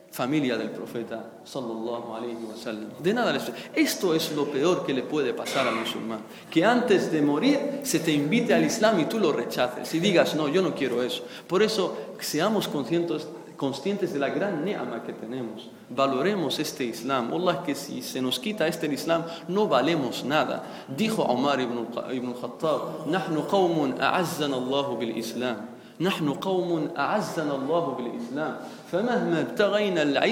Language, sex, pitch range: Spanish, male, 145-215 Hz